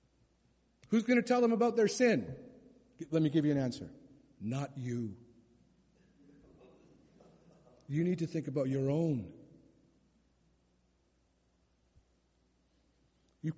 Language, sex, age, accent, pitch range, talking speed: English, male, 50-69, American, 120-160 Hz, 105 wpm